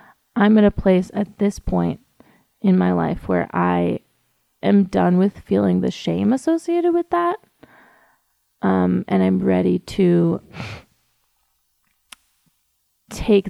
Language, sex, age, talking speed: English, female, 30-49, 120 wpm